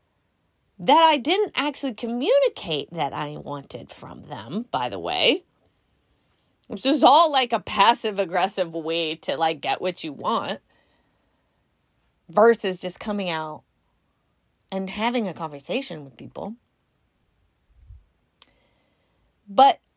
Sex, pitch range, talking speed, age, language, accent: female, 190-285 Hz, 110 wpm, 30-49, English, American